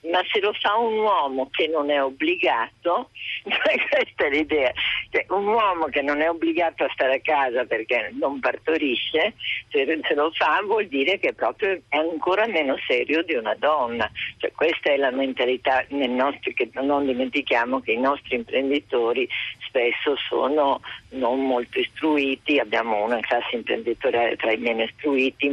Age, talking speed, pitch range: 50-69, 160 wpm, 130-210 Hz